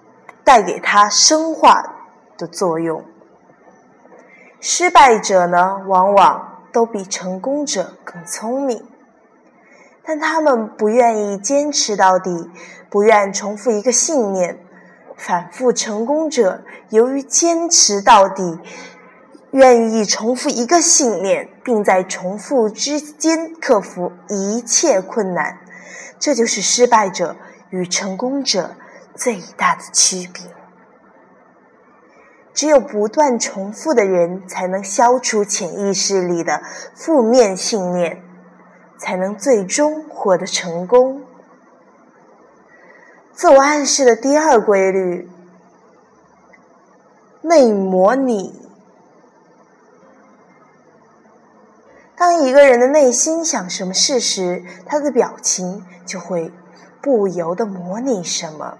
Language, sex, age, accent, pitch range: Chinese, female, 20-39, native, 185-270 Hz